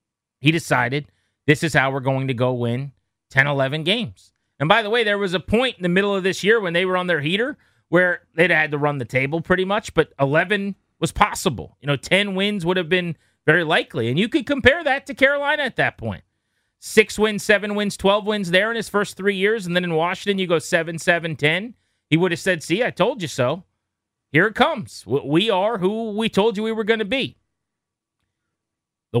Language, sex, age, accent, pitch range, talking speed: English, male, 30-49, American, 130-185 Hz, 225 wpm